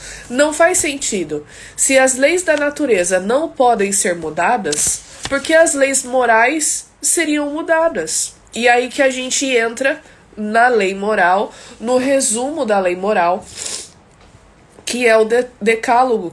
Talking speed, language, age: 130 wpm, Portuguese, 20-39